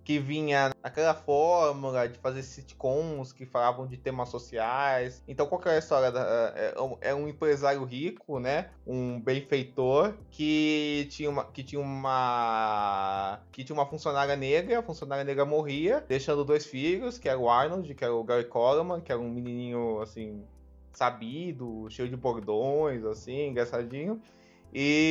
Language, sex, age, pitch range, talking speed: Portuguese, male, 20-39, 120-155 Hz, 155 wpm